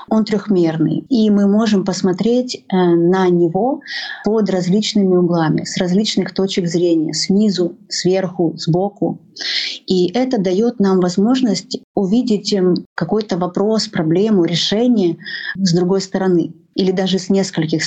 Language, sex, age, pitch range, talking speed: Russian, female, 30-49, 180-215 Hz, 120 wpm